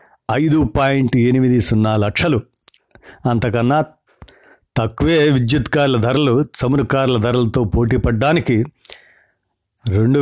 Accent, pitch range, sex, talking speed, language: native, 115-145 Hz, male, 95 wpm, Telugu